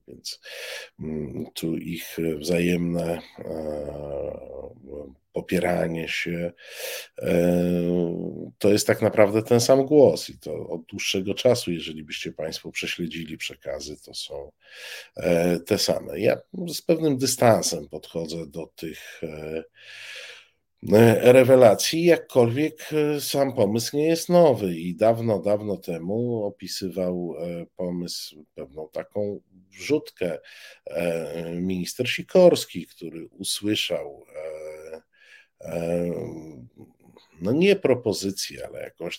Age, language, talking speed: 50-69, Polish, 90 wpm